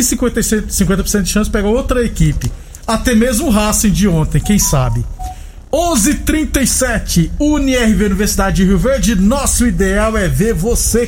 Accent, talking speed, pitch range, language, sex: Brazilian, 135 wpm, 175-225 Hz, Portuguese, male